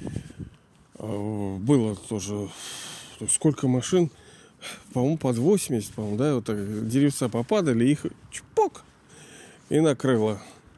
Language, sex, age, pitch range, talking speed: Russian, male, 40-59, 125-165 Hz, 95 wpm